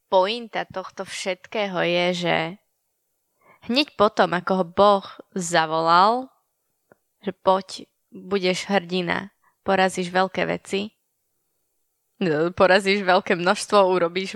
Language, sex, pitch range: Slovak, female, 175-200 Hz